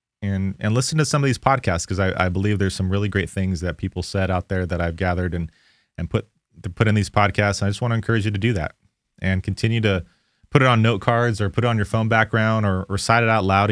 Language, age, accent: English, 30-49, American